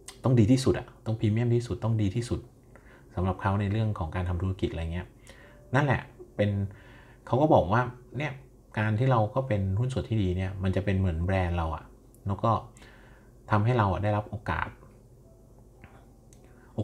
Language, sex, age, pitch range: Thai, male, 30-49, 95-115 Hz